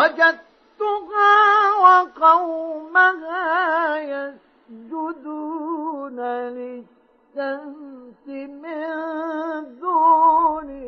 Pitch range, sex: 295-410 Hz, male